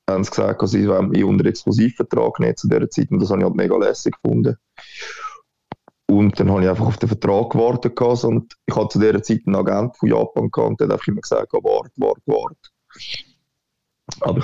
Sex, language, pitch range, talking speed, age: male, English, 105-120 Hz, 210 wpm, 20-39